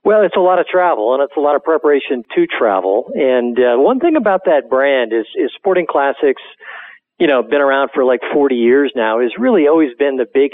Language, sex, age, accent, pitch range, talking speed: English, male, 50-69, American, 125-170 Hz, 230 wpm